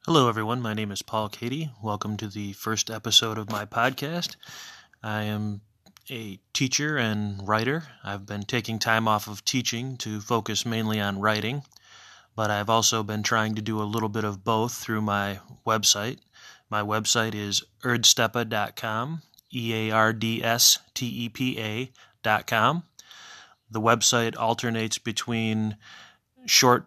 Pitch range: 105-120 Hz